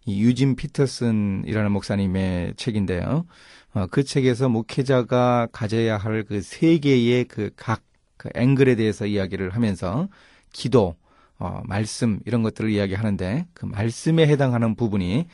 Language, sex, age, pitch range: Korean, male, 30-49, 100-135 Hz